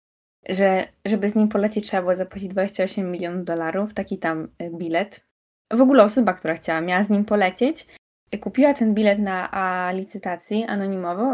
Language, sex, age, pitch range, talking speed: Polish, female, 20-39, 180-220 Hz, 155 wpm